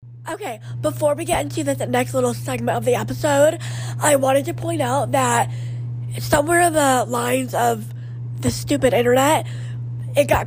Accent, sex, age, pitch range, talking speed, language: American, female, 20-39, 120-130 Hz, 160 wpm, English